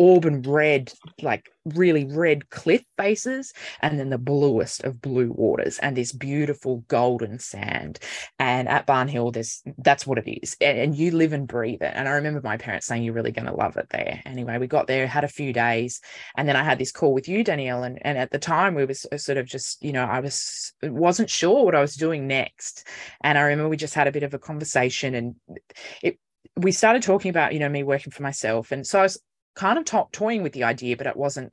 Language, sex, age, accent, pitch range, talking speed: English, female, 20-39, Australian, 120-150 Hz, 230 wpm